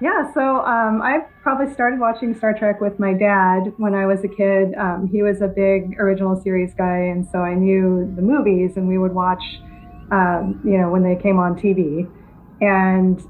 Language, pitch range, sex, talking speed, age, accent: English, 180-200 Hz, female, 200 wpm, 30-49, American